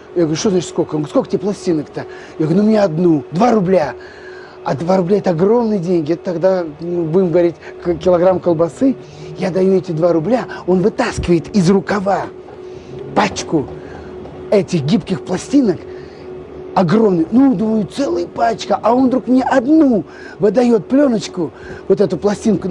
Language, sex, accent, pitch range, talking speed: Russian, male, native, 180-235 Hz, 155 wpm